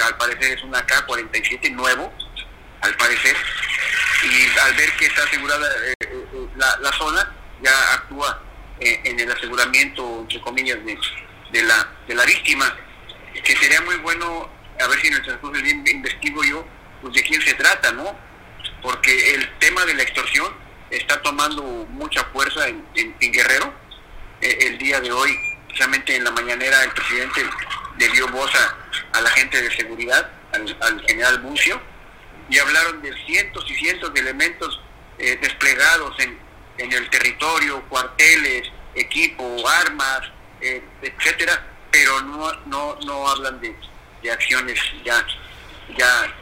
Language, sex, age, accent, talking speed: Spanish, male, 50-69, Mexican, 155 wpm